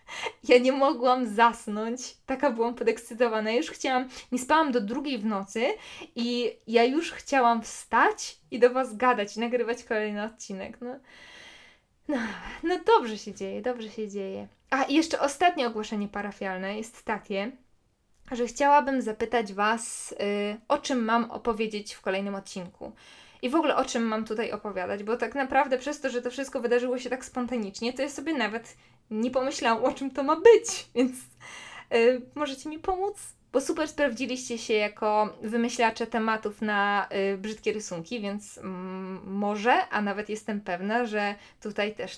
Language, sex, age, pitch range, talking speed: Polish, female, 20-39, 210-260 Hz, 160 wpm